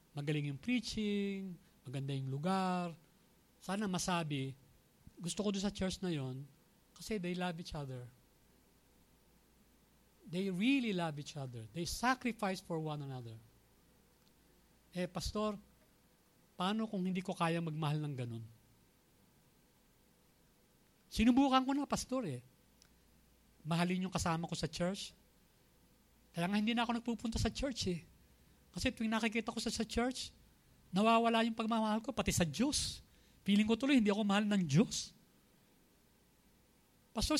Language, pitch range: English, 160-230 Hz